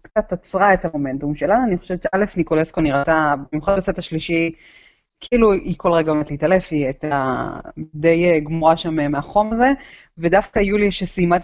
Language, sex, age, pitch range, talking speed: Hebrew, female, 30-49, 155-185 Hz, 155 wpm